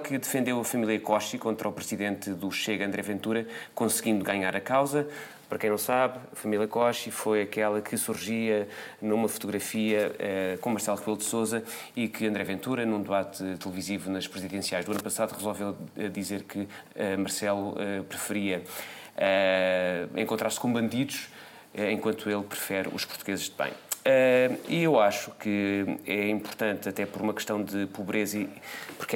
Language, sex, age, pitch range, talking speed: Portuguese, male, 20-39, 100-115 Hz, 165 wpm